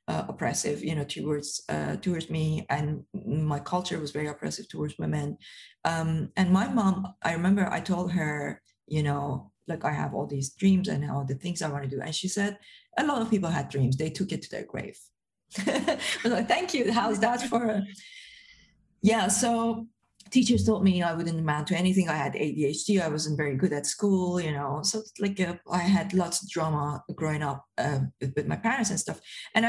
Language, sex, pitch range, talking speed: English, female, 155-210 Hz, 205 wpm